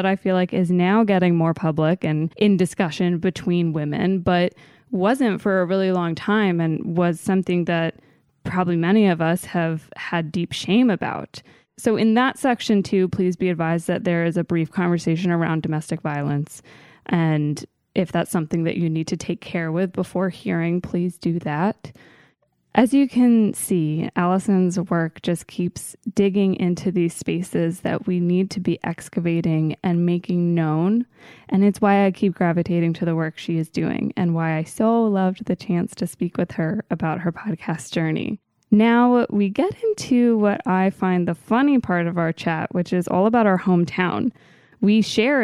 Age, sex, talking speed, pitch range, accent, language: 20-39, female, 180 wpm, 170-200 Hz, American, English